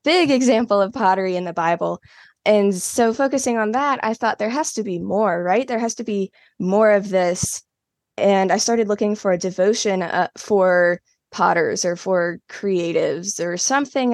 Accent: American